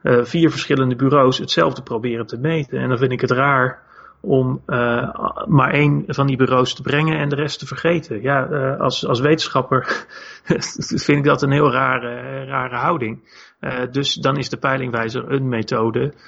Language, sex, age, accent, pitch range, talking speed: Dutch, male, 30-49, Dutch, 120-140 Hz, 175 wpm